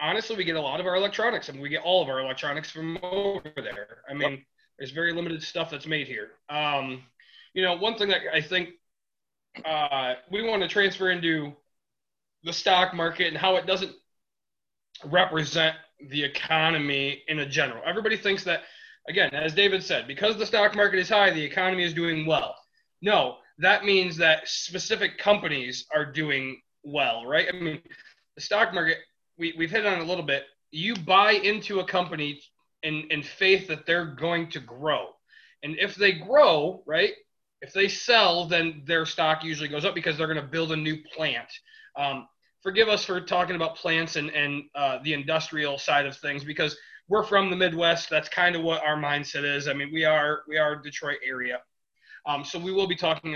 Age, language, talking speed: 20-39, English, 190 wpm